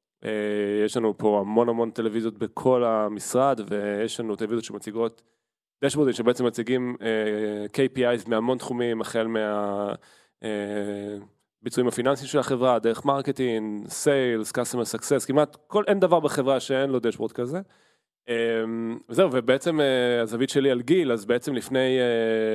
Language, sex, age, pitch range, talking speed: Hebrew, male, 20-39, 110-130 Hz, 135 wpm